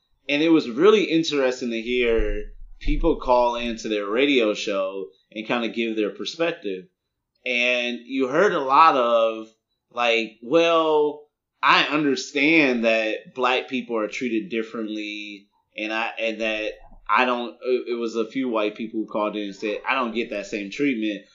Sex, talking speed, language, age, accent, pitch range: male, 165 wpm, English, 30-49, American, 110-150 Hz